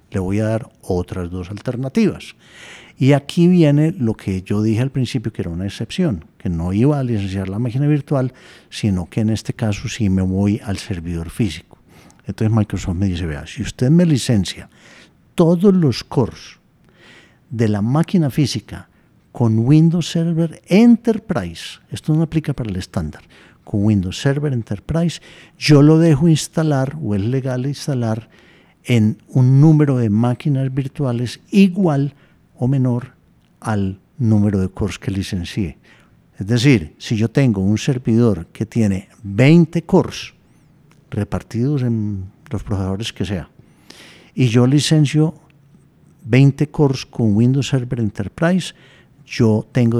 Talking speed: 145 wpm